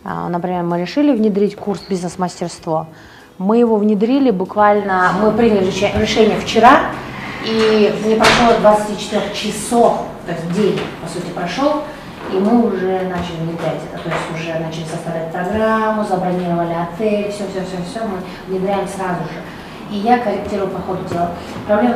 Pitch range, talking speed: 170-205 Hz, 140 wpm